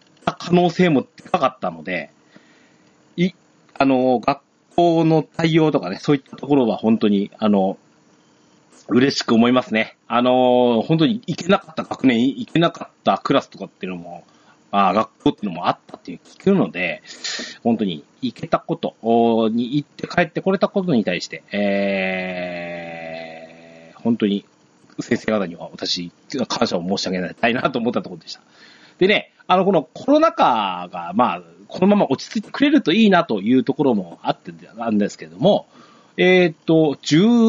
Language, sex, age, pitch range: Japanese, male, 40-59, 115-190 Hz